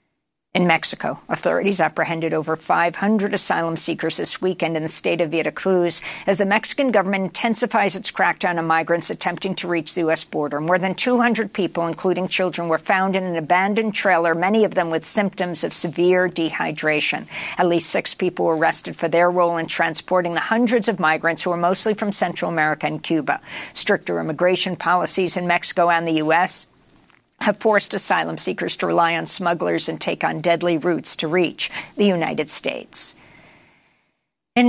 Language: English